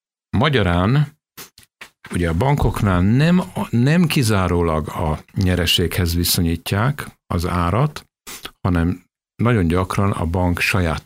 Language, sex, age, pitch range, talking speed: Hungarian, male, 60-79, 85-125 Hz, 100 wpm